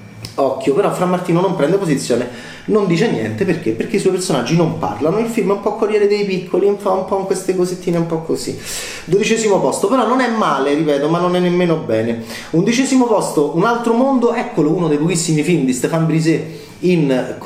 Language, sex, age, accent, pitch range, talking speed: Italian, male, 30-49, native, 125-180 Hz, 210 wpm